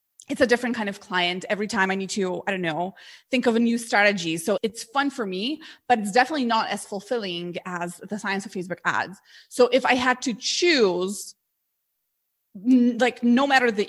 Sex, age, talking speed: female, 20-39, 200 wpm